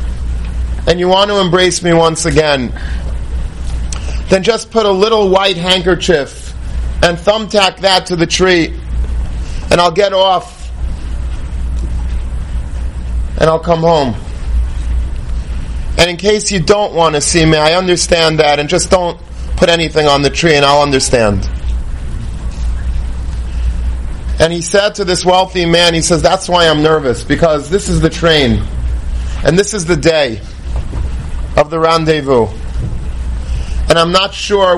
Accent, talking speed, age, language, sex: American, 140 wpm, 30-49, English, male